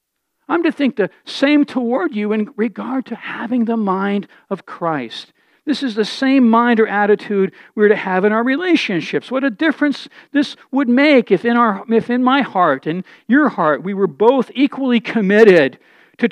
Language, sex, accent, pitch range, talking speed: English, male, American, 215-280 Hz, 175 wpm